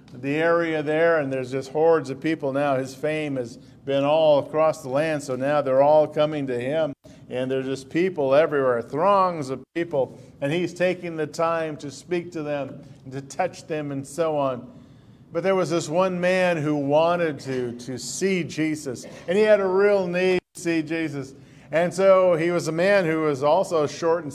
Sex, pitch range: male, 140-175 Hz